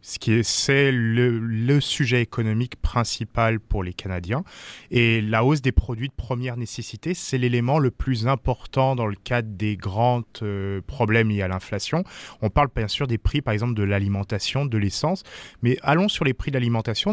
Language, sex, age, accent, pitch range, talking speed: English, male, 20-39, French, 110-140 Hz, 190 wpm